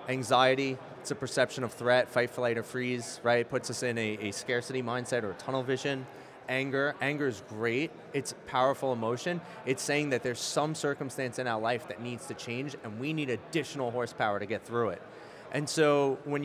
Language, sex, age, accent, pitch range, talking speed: English, male, 30-49, American, 120-145 Hz, 195 wpm